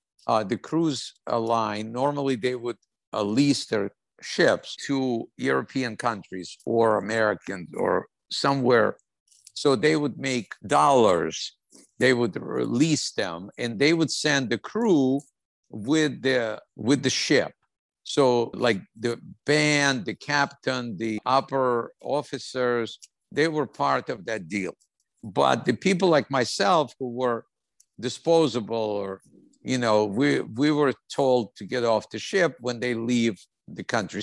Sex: male